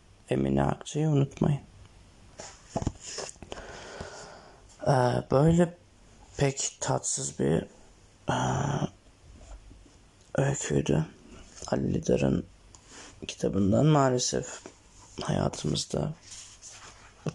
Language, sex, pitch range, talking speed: Turkish, male, 90-140 Hz, 55 wpm